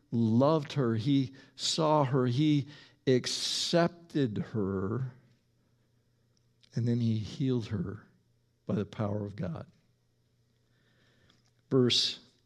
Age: 50-69